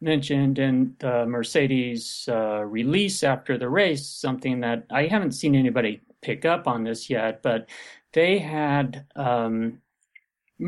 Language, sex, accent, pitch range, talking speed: English, male, American, 125-160 Hz, 135 wpm